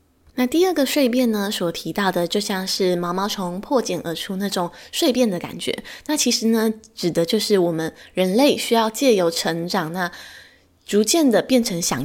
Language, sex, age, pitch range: Chinese, female, 20-39, 170-230 Hz